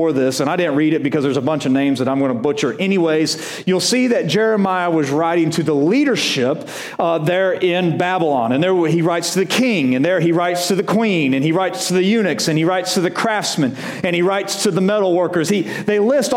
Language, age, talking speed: English, 40-59, 245 wpm